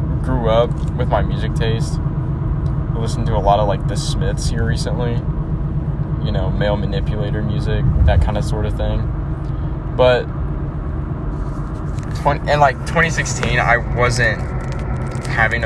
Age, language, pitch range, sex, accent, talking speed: 10-29, English, 120-140 Hz, male, American, 135 wpm